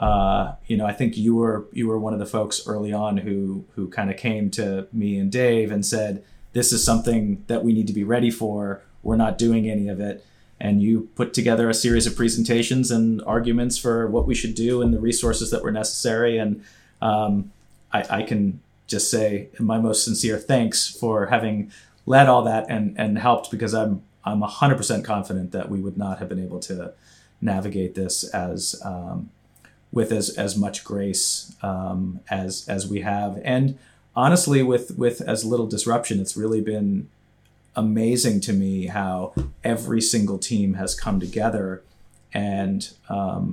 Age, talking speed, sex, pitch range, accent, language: 30-49, 185 wpm, male, 95-115 Hz, American, English